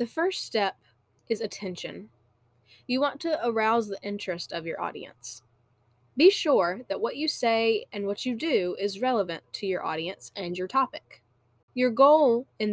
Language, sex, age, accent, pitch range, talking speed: English, female, 10-29, American, 170-235 Hz, 165 wpm